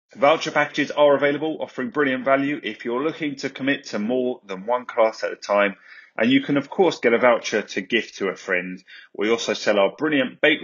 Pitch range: 110-145 Hz